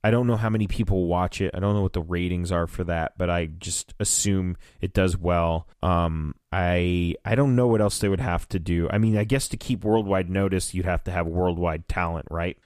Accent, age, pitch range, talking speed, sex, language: American, 30-49, 90-110 Hz, 240 wpm, male, English